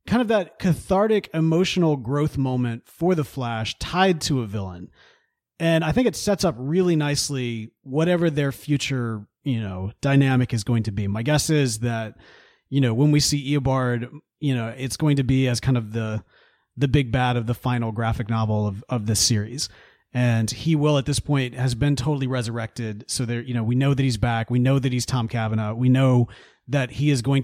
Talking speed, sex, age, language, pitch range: 210 wpm, male, 30-49, English, 115-145 Hz